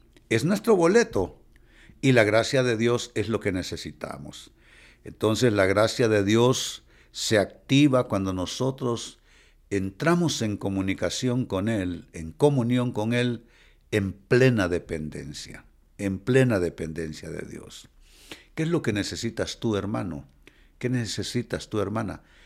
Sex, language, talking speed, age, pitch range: male, Spanish, 130 wpm, 60-79, 85-125 Hz